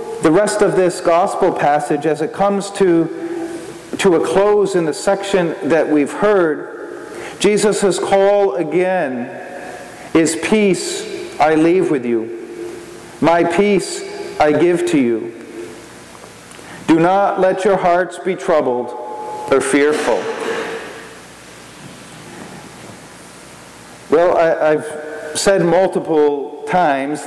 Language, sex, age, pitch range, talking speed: English, male, 40-59, 155-205 Hz, 110 wpm